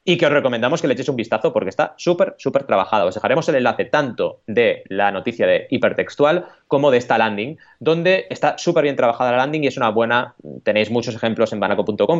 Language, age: Spanish, 20-39